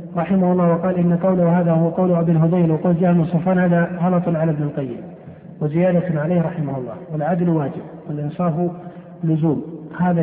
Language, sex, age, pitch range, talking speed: Arabic, male, 50-69, 165-185 Hz, 160 wpm